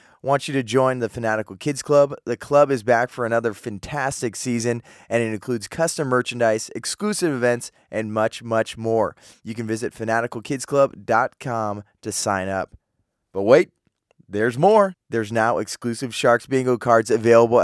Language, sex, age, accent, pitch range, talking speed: English, male, 20-39, American, 110-135 Hz, 155 wpm